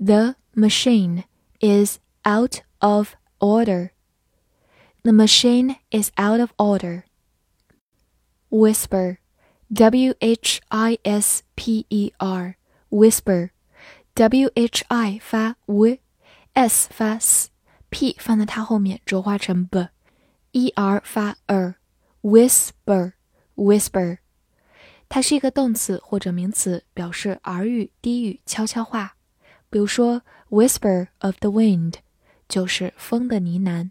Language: Chinese